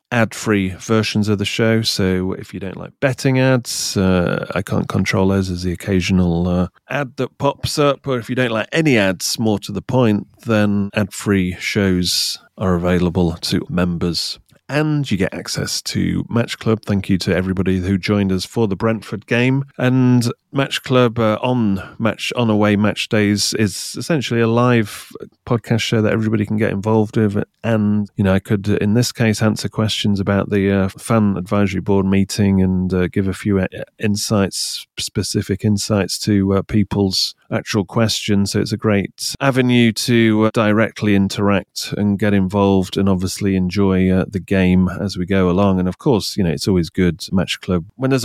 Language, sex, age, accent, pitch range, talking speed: English, male, 30-49, British, 95-110 Hz, 185 wpm